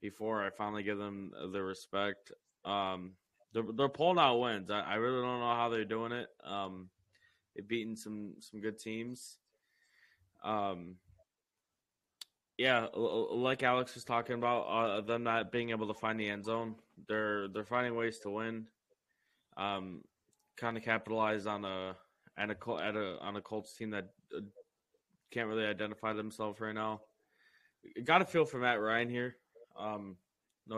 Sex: male